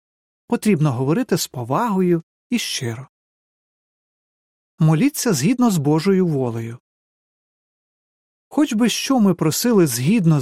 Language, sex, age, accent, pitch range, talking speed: Ukrainian, male, 40-59, native, 145-205 Hz, 100 wpm